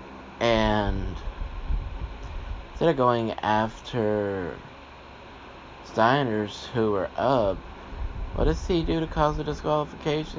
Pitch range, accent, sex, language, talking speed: 70-110 Hz, American, male, English, 100 wpm